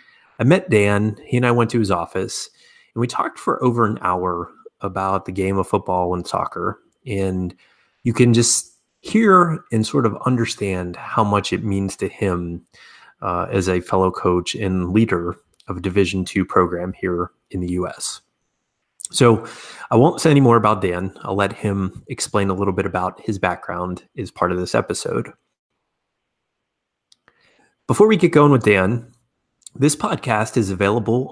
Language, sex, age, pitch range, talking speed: English, male, 30-49, 95-120 Hz, 165 wpm